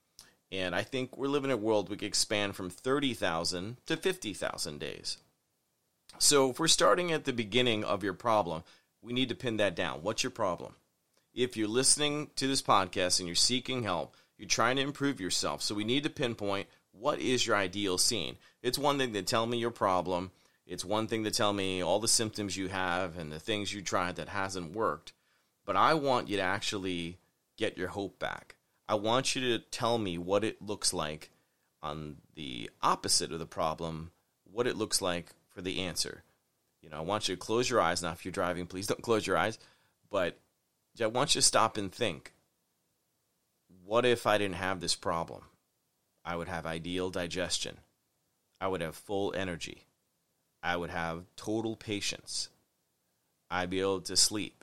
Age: 30-49